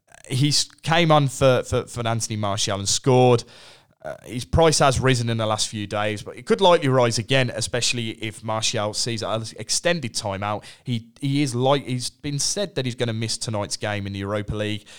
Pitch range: 100-125 Hz